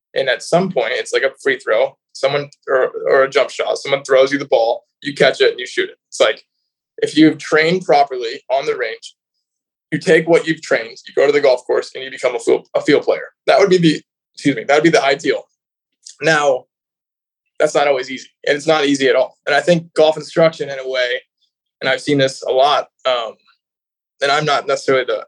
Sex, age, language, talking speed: male, 20-39, English, 230 wpm